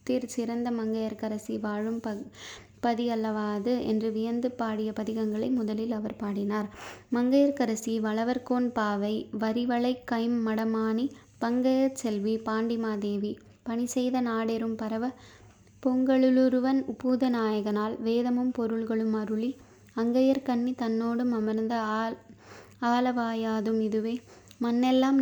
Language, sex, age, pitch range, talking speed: Tamil, female, 20-39, 220-245 Hz, 80 wpm